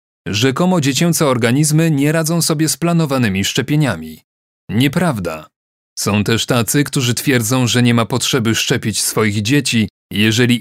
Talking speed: 130 wpm